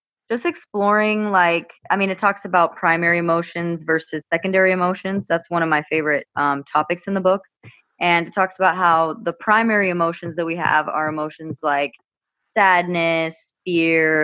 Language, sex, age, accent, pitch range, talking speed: English, female, 20-39, American, 145-180 Hz, 165 wpm